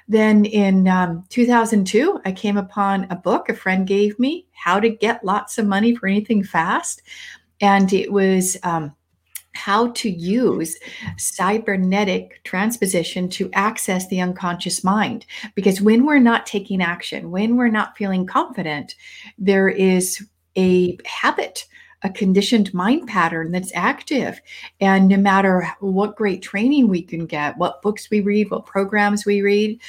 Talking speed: 150 wpm